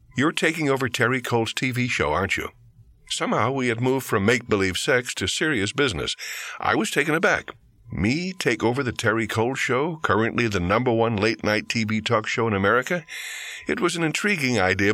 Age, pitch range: 60-79, 105-135 Hz